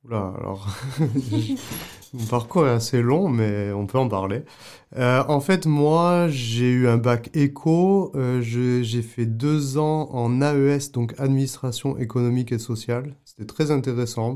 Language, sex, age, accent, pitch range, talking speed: French, male, 30-49, French, 110-135 Hz, 155 wpm